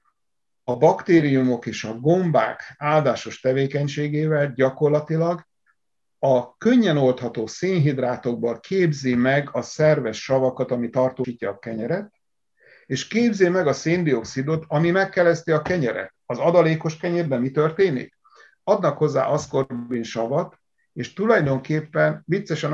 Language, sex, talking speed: Hungarian, male, 110 wpm